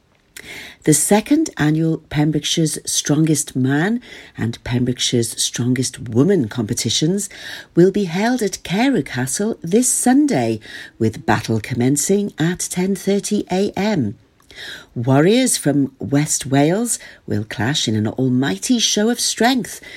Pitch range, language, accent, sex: 130-200 Hz, English, British, female